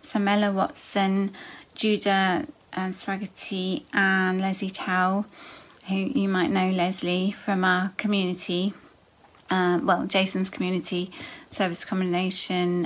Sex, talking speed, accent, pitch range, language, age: female, 105 wpm, British, 190-225 Hz, English, 30-49